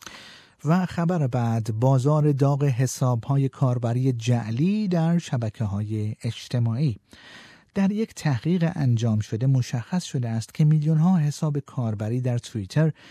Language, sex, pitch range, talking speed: Persian, male, 115-160 Hz, 130 wpm